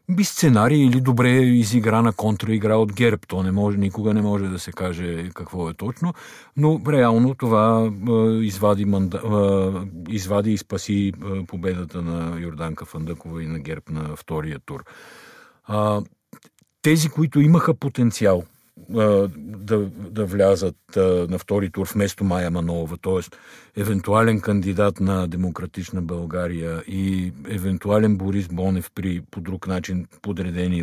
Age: 50-69